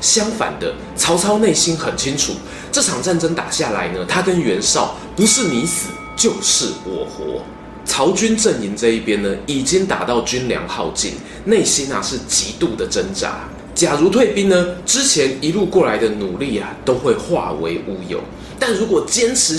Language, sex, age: Chinese, male, 20-39